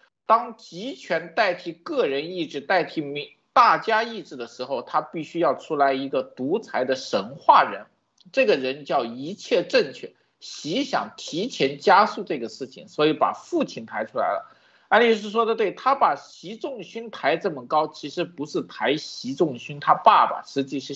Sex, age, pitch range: male, 50-69, 150-245 Hz